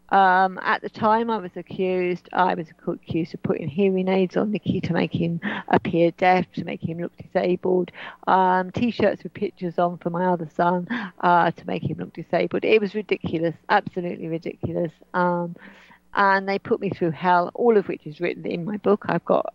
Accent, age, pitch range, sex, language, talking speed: British, 40-59, 175-200 Hz, female, English, 195 wpm